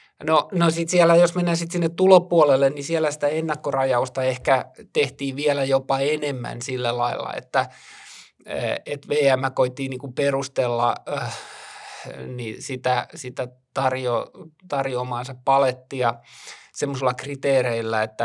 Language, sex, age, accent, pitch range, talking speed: Finnish, male, 20-39, native, 120-140 Hz, 110 wpm